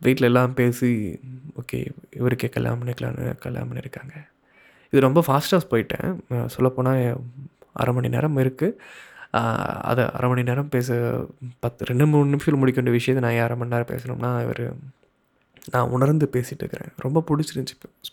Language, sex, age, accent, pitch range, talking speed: Tamil, male, 20-39, native, 120-140 Hz, 135 wpm